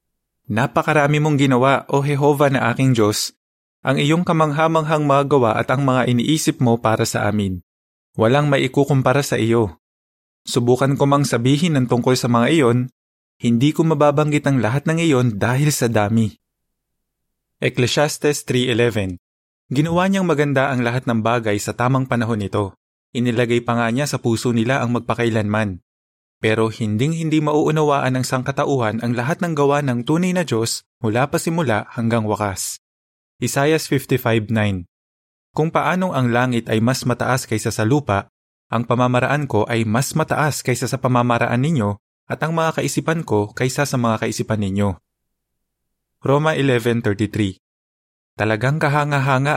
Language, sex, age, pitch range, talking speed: Filipino, male, 20-39, 105-140 Hz, 145 wpm